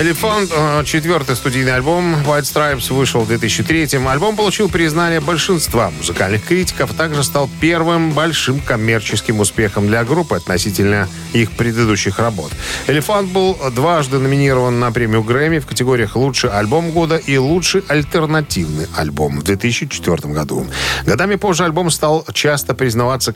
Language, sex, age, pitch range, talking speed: Russian, male, 40-59, 105-155 Hz, 135 wpm